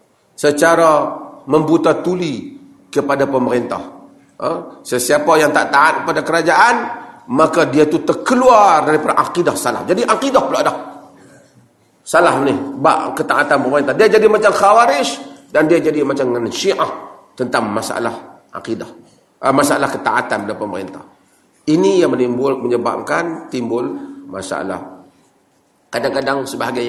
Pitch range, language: 140-205 Hz, Malay